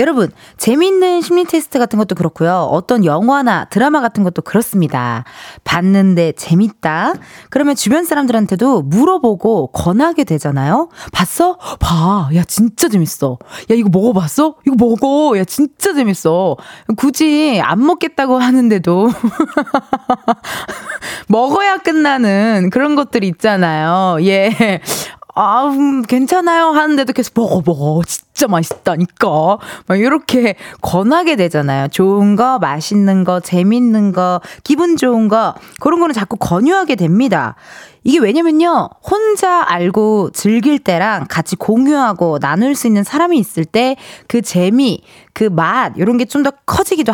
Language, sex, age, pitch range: Korean, female, 20-39, 185-285 Hz